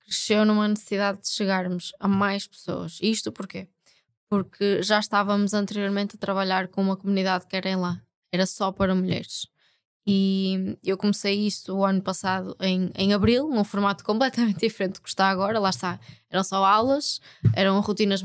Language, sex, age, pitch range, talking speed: Portuguese, female, 20-39, 185-215 Hz, 170 wpm